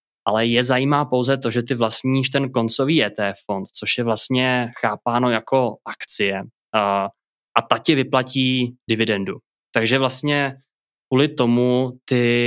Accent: native